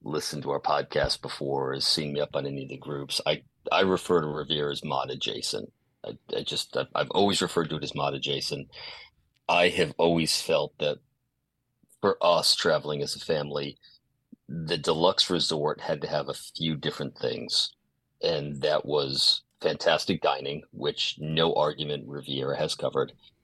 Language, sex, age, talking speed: English, male, 40-59, 170 wpm